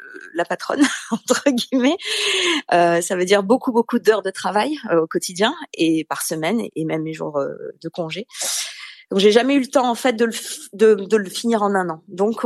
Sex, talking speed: female, 215 wpm